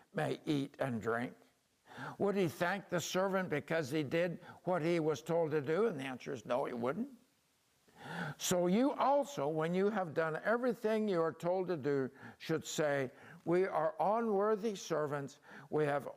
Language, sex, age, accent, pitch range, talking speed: English, male, 60-79, American, 165-210 Hz, 170 wpm